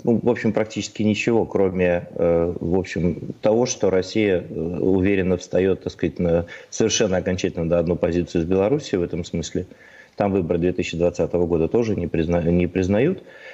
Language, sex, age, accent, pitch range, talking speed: Russian, male, 30-49, native, 90-105 Hz, 145 wpm